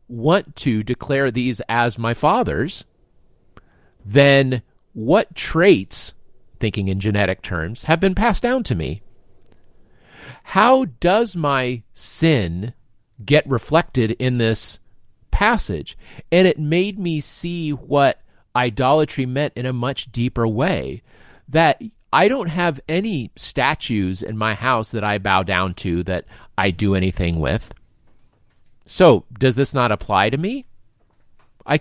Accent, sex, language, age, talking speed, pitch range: American, male, English, 40-59, 130 wpm, 110-155 Hz